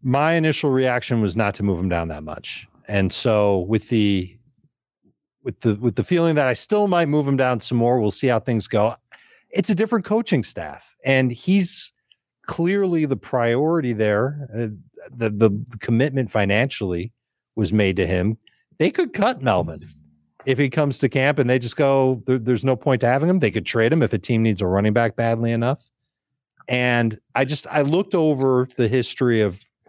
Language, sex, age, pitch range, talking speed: English, male, 40-59, 110-135 Hz, 195 wpm